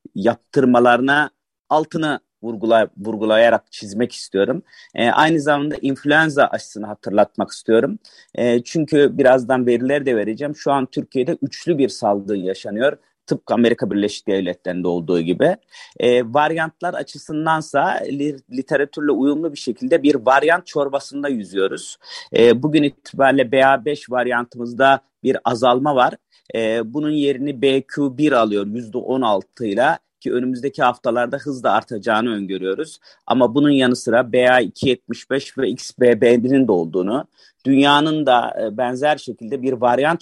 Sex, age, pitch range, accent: male, 40-59, 120-145 Hz, native